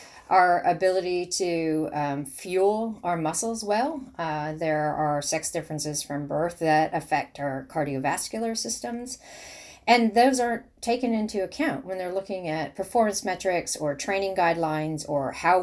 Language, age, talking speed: French, 40-59, 140 wpm